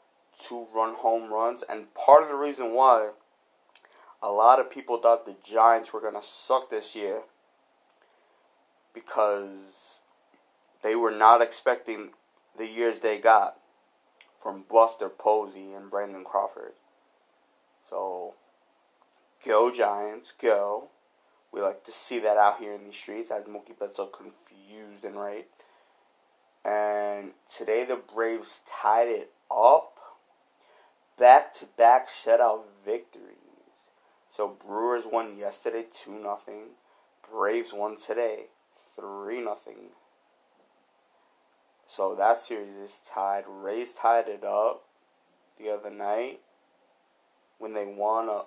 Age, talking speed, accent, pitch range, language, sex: 20-39, 120 wpm, American, 100-120 Hz, English, male